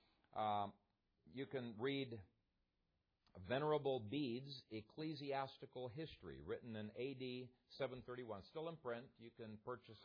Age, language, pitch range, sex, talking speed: 50-69, English, 125-185 Hz, male, 105 wpm